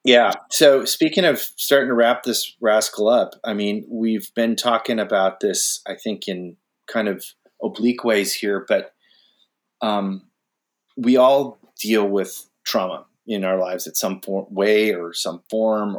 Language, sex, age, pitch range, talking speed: English, male, 30-49, 100-120 Hz, 155 wpm